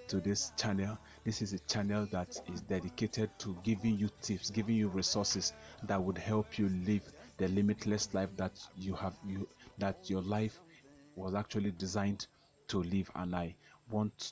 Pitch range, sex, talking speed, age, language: 95-110 Hz, male, 170 wpm, 30-49, English